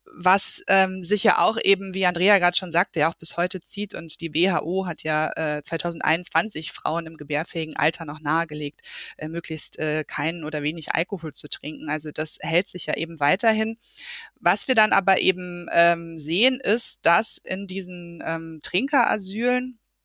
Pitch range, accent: 165-200 Hz, German